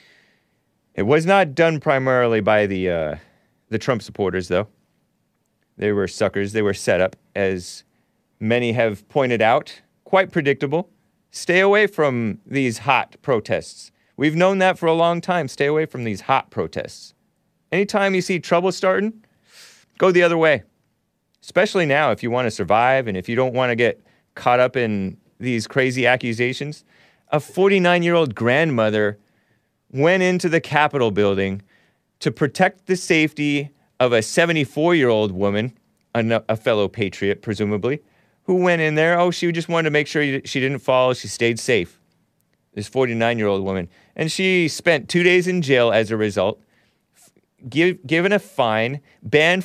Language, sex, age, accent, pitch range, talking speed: English, male, 30-49, American, 110-170 Hz, 155 wpm